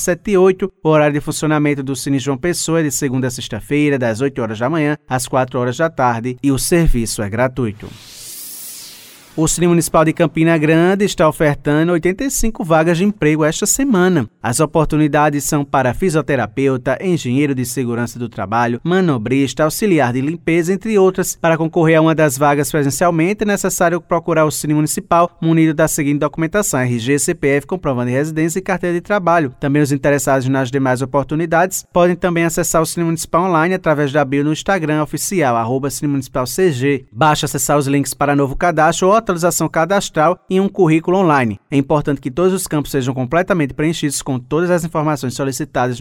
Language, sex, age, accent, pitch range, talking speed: Portuguese, male, 20-39, Brazilian, 135-170 Hz, 180 wpm